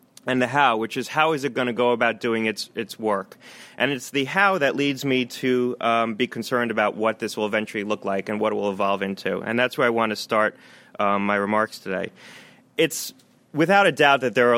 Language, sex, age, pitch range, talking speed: English, male, 30-49, 110-130 Hz, 240 wpm